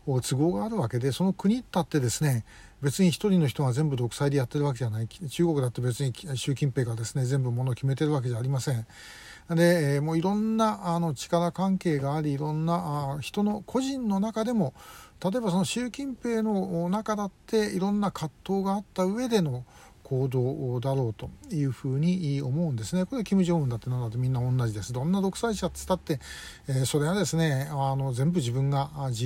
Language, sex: Japanese, male